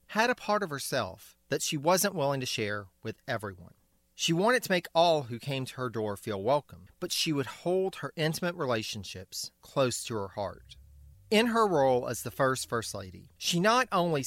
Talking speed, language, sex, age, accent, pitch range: 200 wpm, English, male, 40-59, American, 110-185 Hz